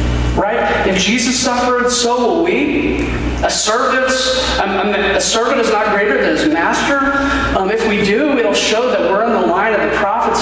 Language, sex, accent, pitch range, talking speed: English, male, American, 140-230 Hz, 190 wpm